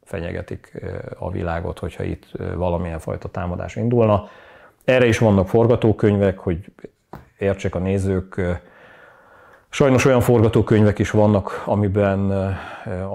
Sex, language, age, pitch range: male, Hungarian, 30-49, 90-110 Hz